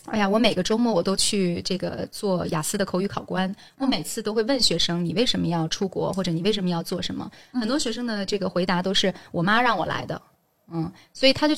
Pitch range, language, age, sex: 170-210 Hz, Chinese, 20-39, female